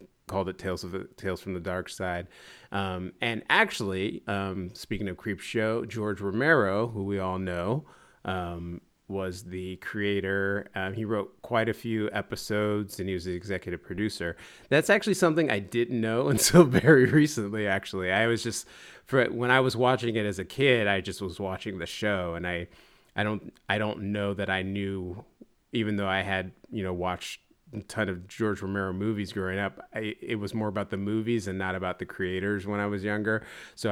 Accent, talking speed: American, 195 wpm